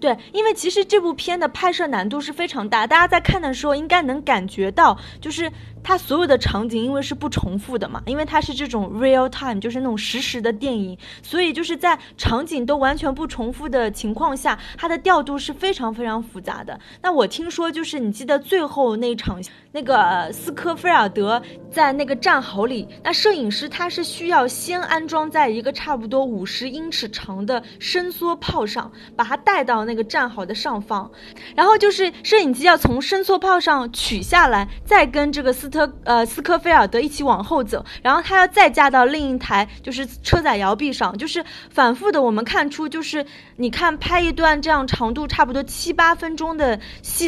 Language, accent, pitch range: Chinese, native, 235-330 Hz